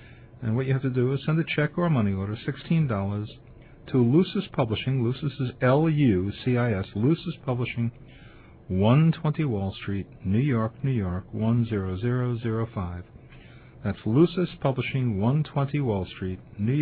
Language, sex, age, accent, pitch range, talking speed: English, male, 50-69, American, 110-130 Hz, 160 wpm